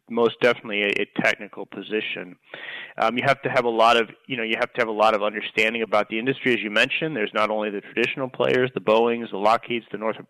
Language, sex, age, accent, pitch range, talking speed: English, male, 30-49, American, 110-130 Hz, 245 wpm